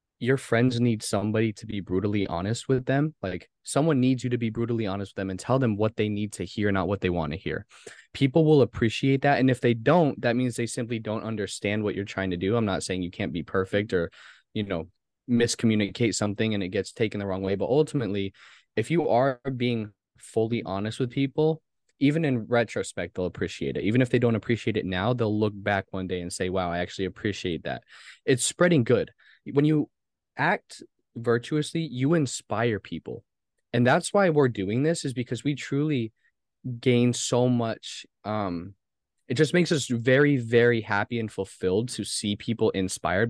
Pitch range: 100-130 Hz